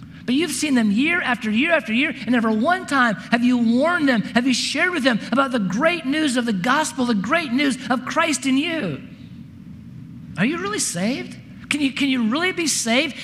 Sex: male